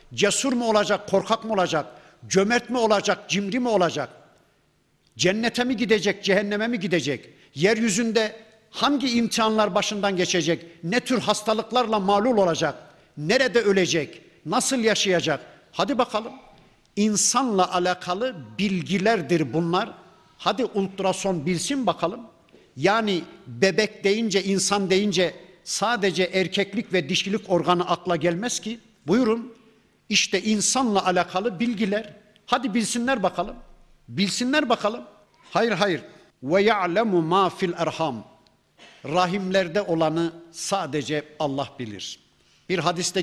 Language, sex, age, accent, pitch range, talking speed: Turkish, male, 50-69, native, 165-215 Hz, 110 wpm